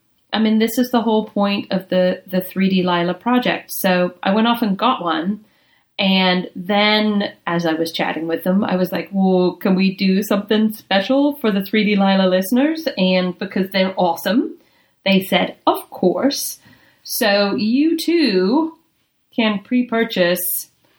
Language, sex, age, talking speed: English, female, 30-49, 155 wpm